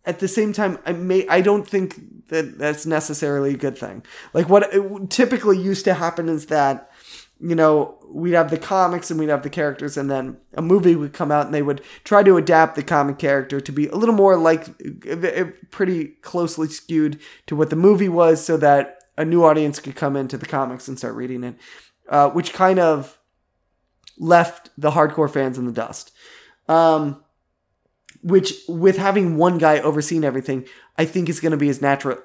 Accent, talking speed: American, 195 wpm